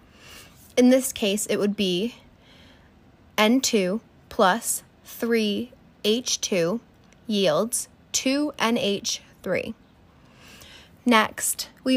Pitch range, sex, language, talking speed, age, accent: 205-245 Hz, female, English, 65 wpm, 10-29, American